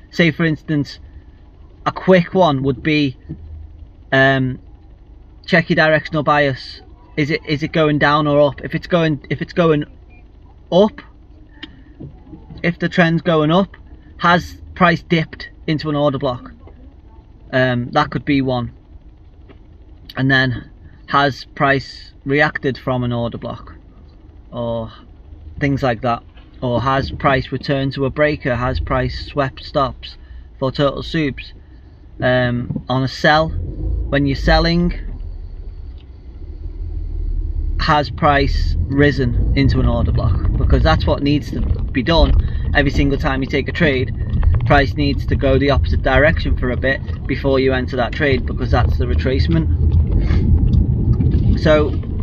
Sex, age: male, 30-49